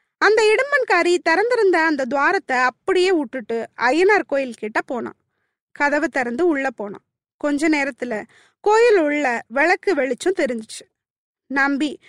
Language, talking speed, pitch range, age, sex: Tamil, 115 wpm, 260-365 Hz, 20-39, female